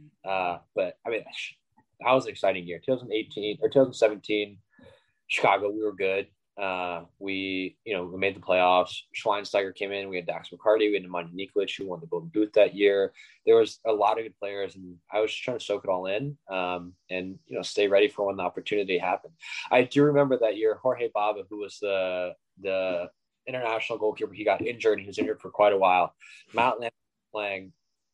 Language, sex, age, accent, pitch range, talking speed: English, male, 20-39, American, 95-120 Hz, 205 wpm